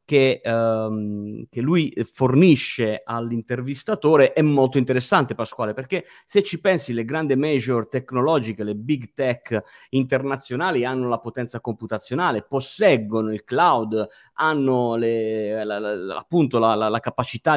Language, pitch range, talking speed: Italian, 115-155 Hz, 125 wpm